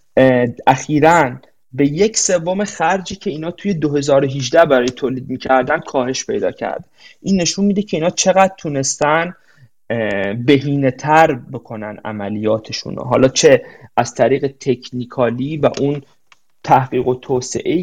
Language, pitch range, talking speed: Persian, 130-170 Hz, 120 wpm